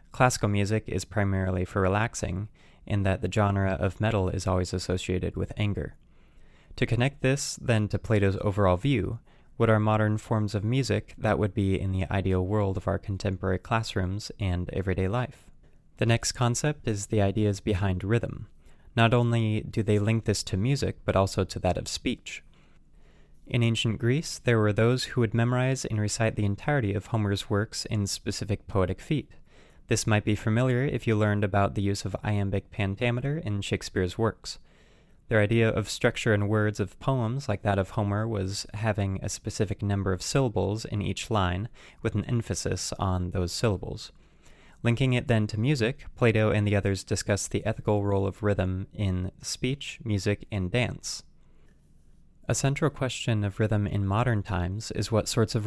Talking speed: 175 wpm